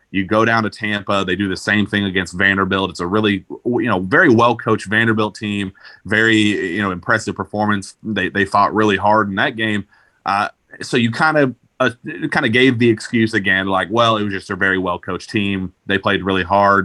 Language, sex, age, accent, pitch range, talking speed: English, male, 30-49, American, 95-115 Hz, 210 wpm